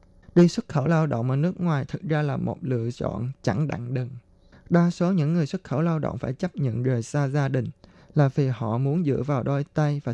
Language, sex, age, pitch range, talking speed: Vietnamese, male, 20-39, 130-160 Hz, 245 wpm